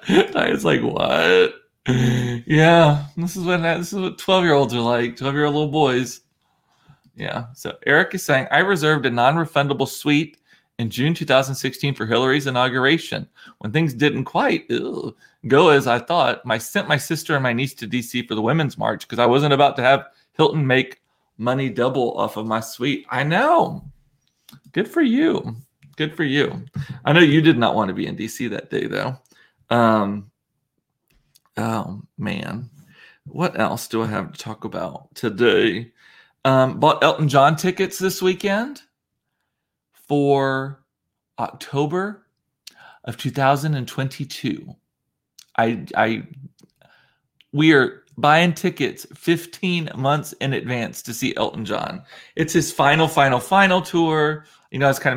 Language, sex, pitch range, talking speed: English, male, 125-160 Hz, 150 wpm